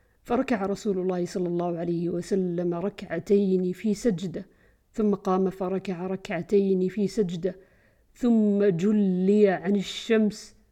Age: 50-69